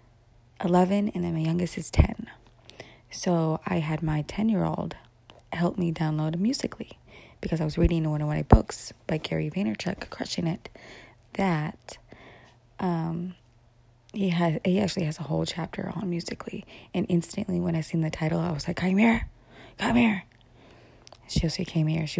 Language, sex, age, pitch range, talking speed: English, female, 20-39, 155-180 Hz, 160 wpm